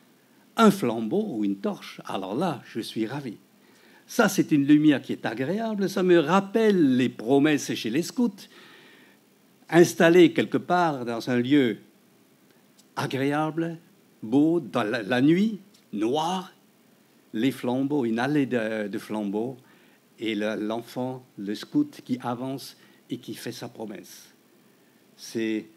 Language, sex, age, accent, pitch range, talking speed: French, male, 60-79, French, 115-170 Hz, 135 wpm